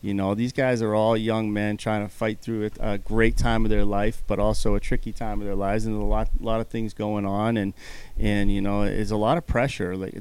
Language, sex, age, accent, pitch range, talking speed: English, male, 30-49, American, 105-125 Hz, 270 wpm